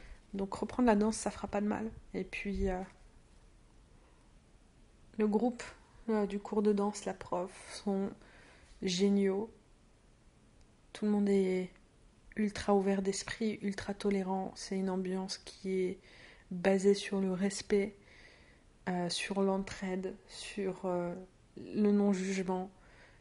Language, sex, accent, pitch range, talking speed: French, female, French, 180-205 Hz, 125 wpm